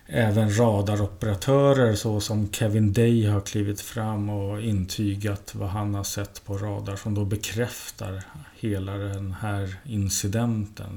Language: Swedish